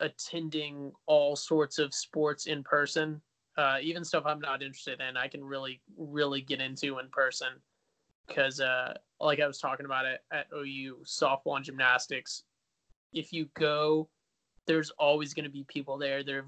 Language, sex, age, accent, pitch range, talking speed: English, male, 20-39, American, 135-155 Hz, 170 wpm